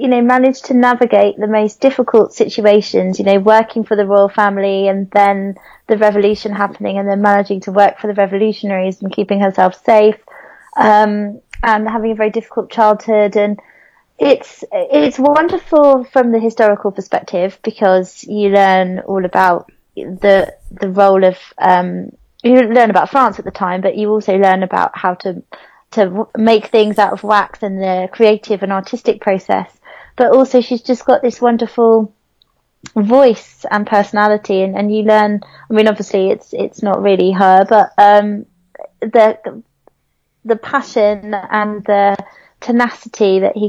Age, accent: 20-39, British